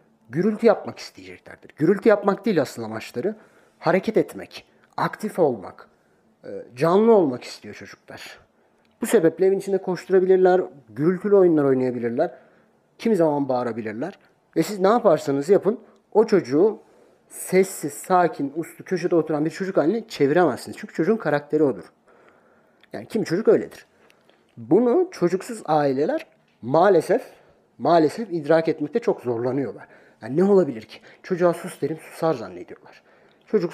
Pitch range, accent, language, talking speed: 145-195 Hz, native, Turkish, 125 wpm